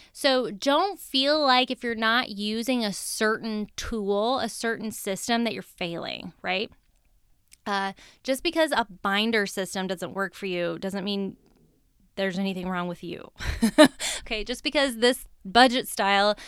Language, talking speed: English, 150 wpm